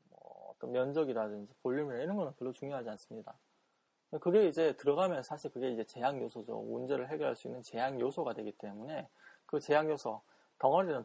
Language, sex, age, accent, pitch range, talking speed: English, male, 20-39, Korean, 115-145 Hz, 145 wpm